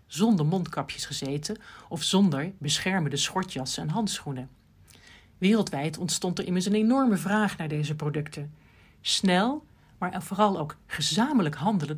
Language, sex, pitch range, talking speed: Dutch, male, 150-205 Hz, 125 wpm